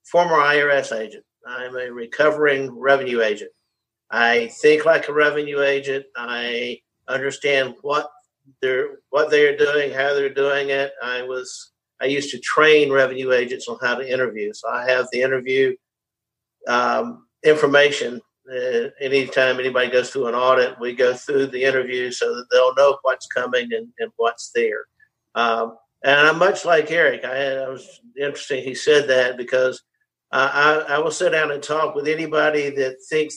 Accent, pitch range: American, 130-155 Hz